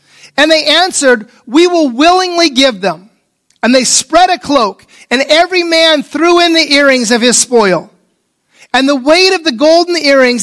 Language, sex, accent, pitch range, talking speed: English, male, American, 240-330 Hz, 175 wpm